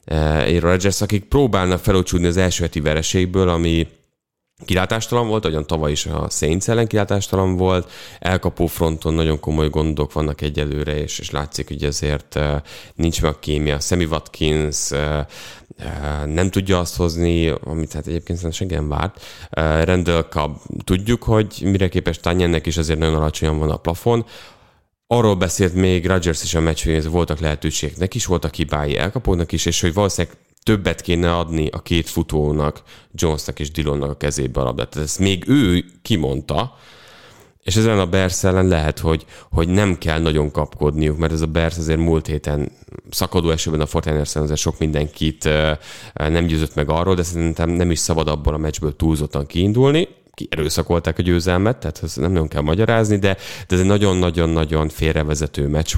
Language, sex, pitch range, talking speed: English, male, 75-95 Hz, 160 wpm